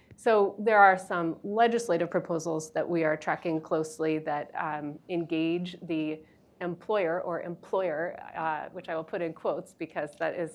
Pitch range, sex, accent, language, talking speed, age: 160-195 Hz, female, American, English, 160 wpm, 30-49